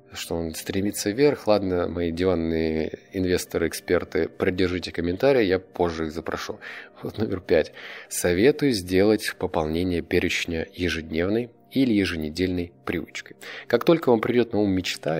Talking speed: 125 wpm